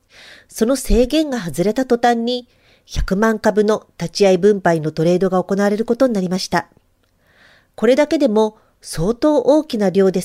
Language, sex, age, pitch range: Japanese, female, 40-59, 170-225 Hz